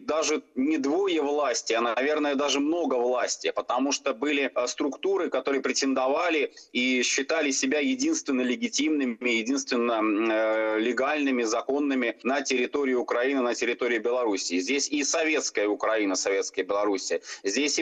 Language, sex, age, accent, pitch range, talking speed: Russian, male, 30-49, native, 120-170 Hz, 120 wpm